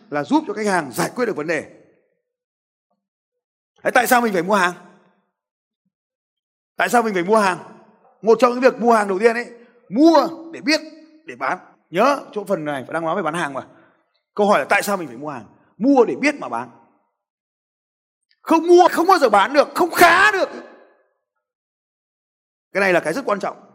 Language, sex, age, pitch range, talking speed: Vietnamese, male, 20-39, 180-295 Hz, 200 wpm